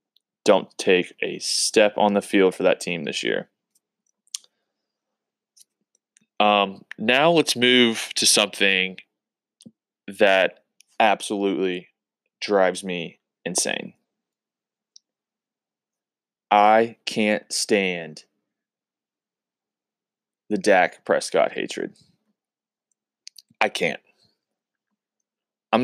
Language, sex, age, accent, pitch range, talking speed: English, male, 20-39, American, 90-115 Hz, 75 wpm